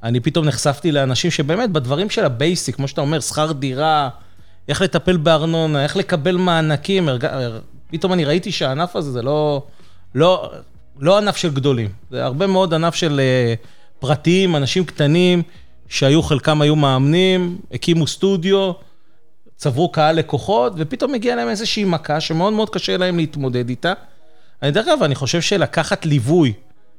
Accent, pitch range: native, 130-170 Hz